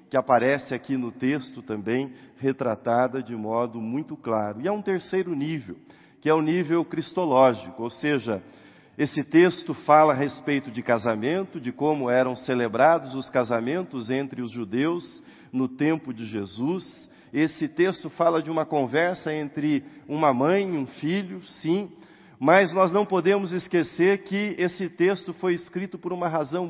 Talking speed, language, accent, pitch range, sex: 155 wpm, Portuguese, Brazilian, 135-180 Hz, male